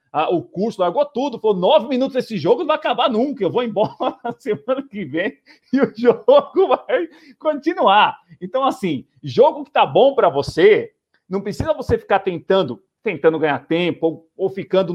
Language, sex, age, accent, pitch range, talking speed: Portuguese, male, 40-59, Brazilian, 175-255 Hz, 175 wpm